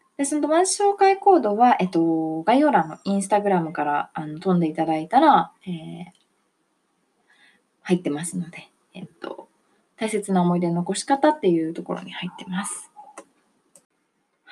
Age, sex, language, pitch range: 20-39, female, Japanese, 175-265 Hz